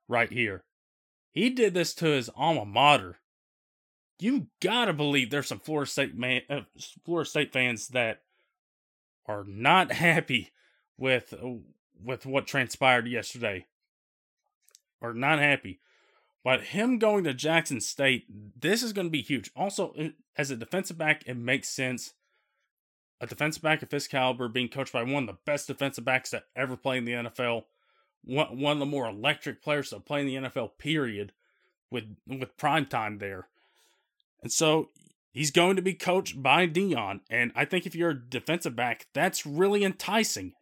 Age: 20-39